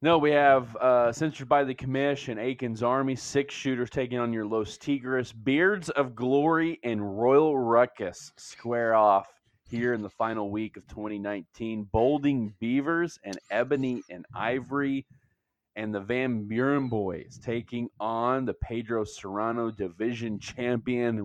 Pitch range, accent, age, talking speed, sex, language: 110-135 Hz, American, 20-39, 140 wpm, male, English